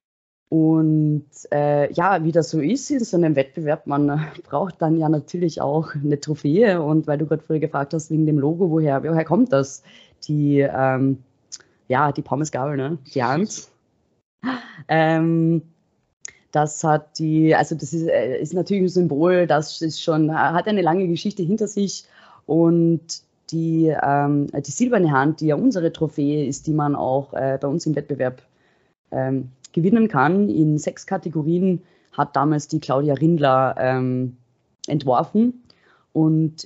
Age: 20-39